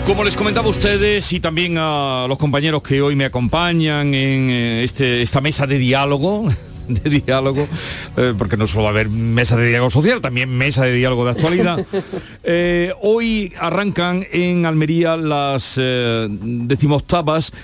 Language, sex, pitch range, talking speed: Spanish, male, 125-165 Hz, 155 wpm